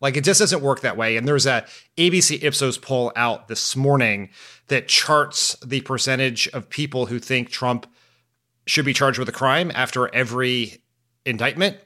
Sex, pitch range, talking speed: male, 120-155 Hz, 170 wpm